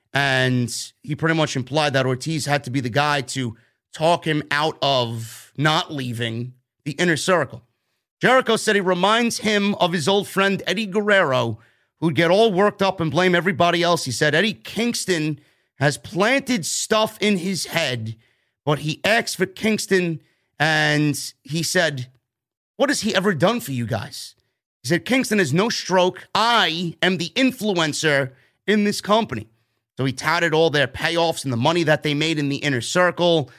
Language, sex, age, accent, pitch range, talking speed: English, male, 30-49, American, 140-185 Hz, 175 wpm